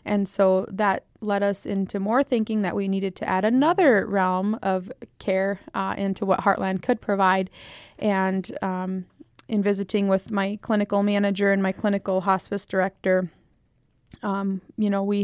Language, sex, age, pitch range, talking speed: English, female, 20-39, 190-215 Hz, 160 wpm